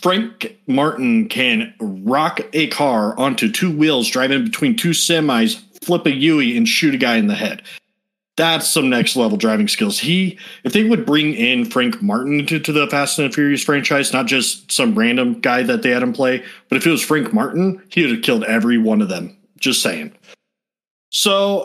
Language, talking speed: English, 200 wpm